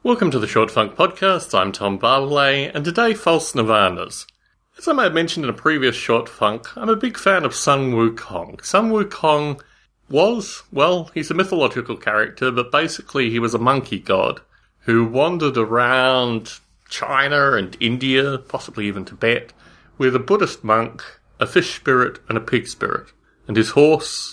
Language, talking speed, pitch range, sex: English, 170 wpm, 115-180 Hz, male